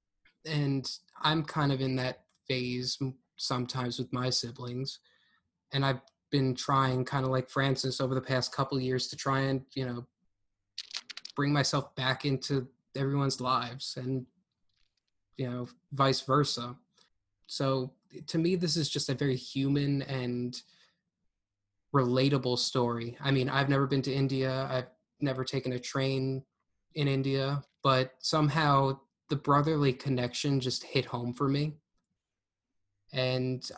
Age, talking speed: 20-39, 140 wpm